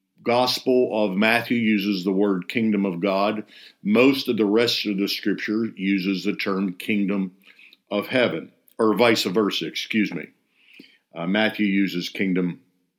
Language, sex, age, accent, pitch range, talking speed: English, male, 50-69, American, 100-125 Hz, 145 wpm